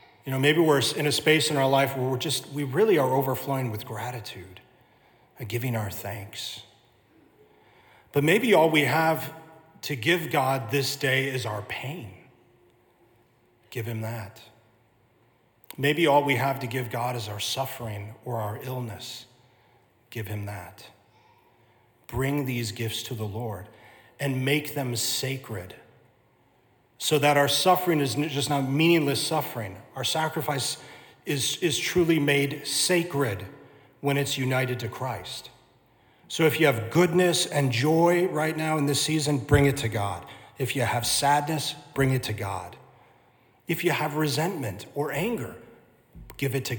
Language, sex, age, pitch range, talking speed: English, male, 40-59, 115-145 Hz, 155 wpm